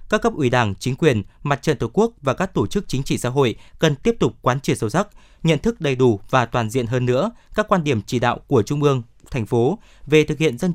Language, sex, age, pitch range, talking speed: Vietnamese, male, 20-39, 125-165 Hz, 270 wpm